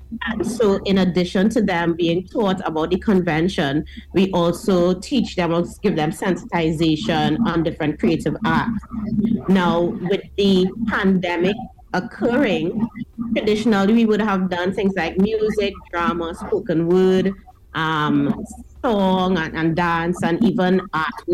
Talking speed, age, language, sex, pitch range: 130 wpm, 30-49, English, female, 175-220 Hz